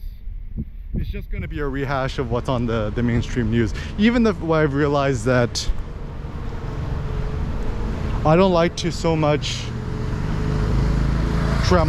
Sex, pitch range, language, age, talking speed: male, 110-150 Hz, English, 20-39, 120 wpm